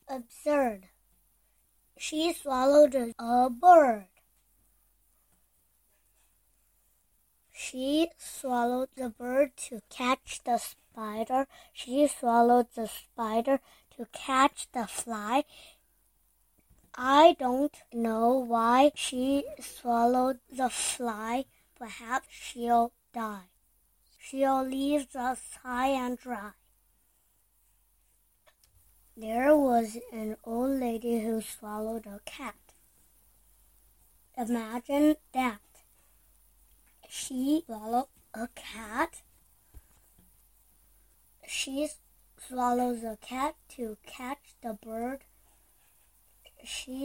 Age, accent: 20-39, American